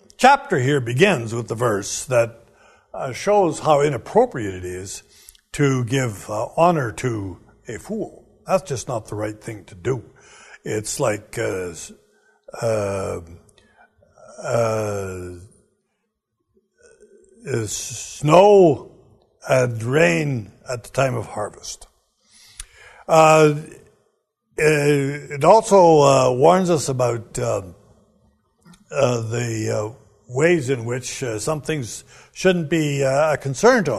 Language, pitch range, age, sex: English, 115-160 Hz, 60-79, male